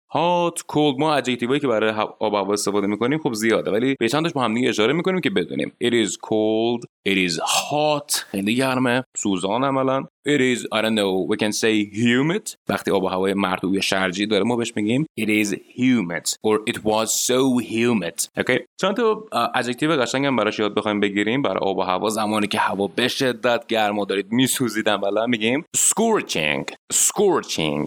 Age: 30-49